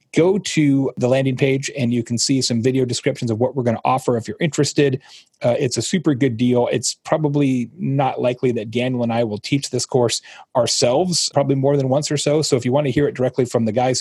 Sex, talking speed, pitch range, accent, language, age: male, 245 wpm, 120-150 Hz, American, English, 30-49